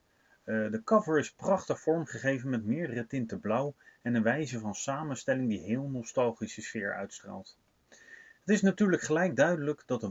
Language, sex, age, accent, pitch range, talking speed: Dutch, male, 30-49, Dutch, 110-155 Hz, 155 wpm